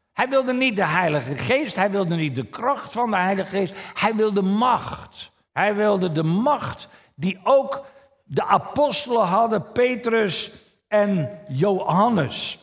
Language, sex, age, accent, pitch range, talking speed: Dutch, male, 60-79, Dutch, 170-250 Hz, 145 wpm